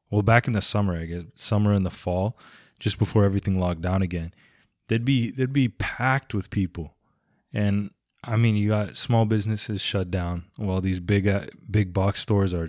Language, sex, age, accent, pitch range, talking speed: English, male, 20-39, American, 95-110 Hz, 195 wpm